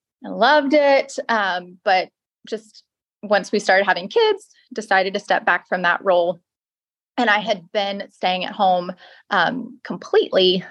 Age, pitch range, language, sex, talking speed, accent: 20-39, 190-260 Hz, English, female, 150 wpm, American